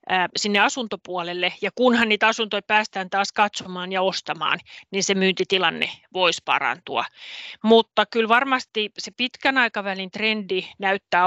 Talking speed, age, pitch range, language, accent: 130 wpm, 30-49, 185-215 Hz, Finnish, native